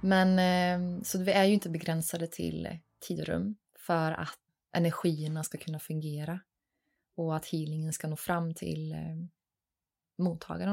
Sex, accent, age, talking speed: female, native, 20-39, 130 wpm